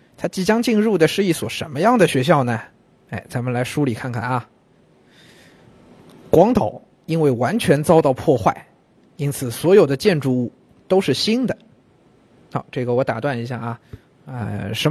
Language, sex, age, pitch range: Chinese, male, 20-39, 125-165 Hz